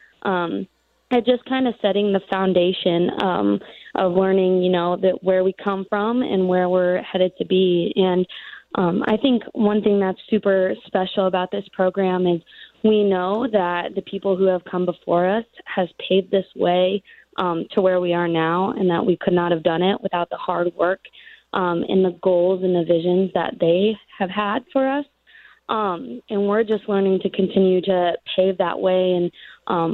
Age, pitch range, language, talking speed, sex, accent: 20-39, 180-205 Hz, English, 190 wpm, female, American